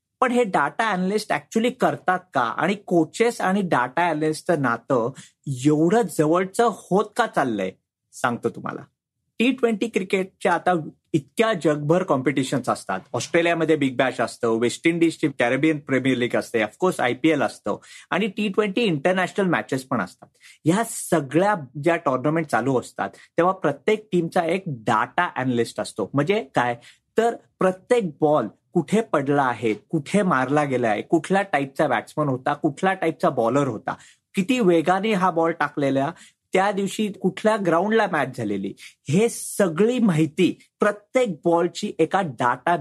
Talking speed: 140 wpm